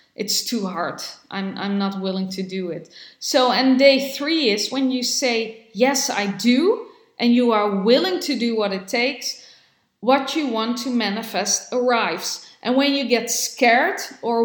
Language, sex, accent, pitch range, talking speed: English, female, Dutch, 220-260 Hz, 175 wpm